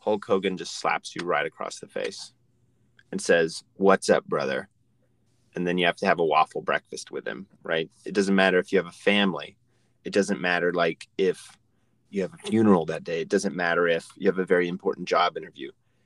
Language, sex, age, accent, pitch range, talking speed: English, male, 30-49, American, 95-120 Hz, 210 wpm